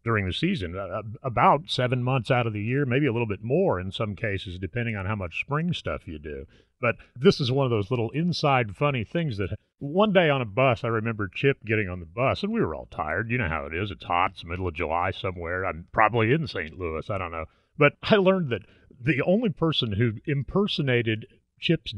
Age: 40-59